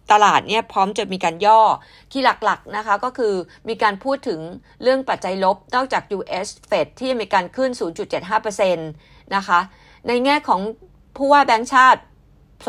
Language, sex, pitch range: Thai, female, 175-225 Hz